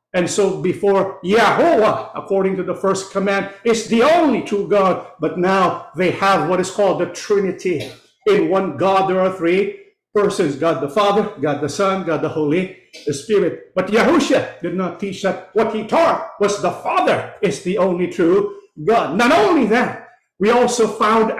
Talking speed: 175 wpm